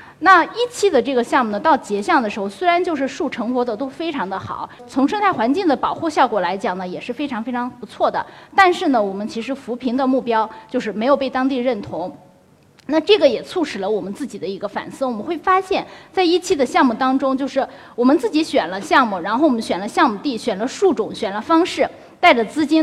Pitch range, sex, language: 230-320 Hz, female, Chinese